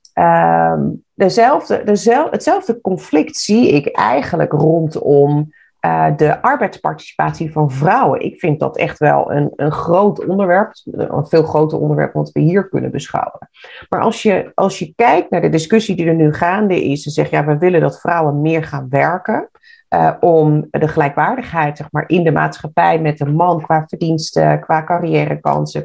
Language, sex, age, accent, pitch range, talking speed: Dutch, female, 40-59, Dutch, 150-225 Hz, 165 wpm